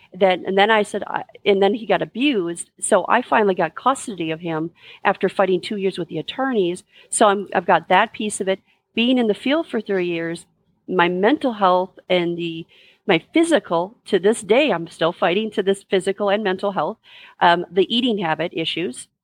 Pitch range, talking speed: 180-220 Hz, 190 wpm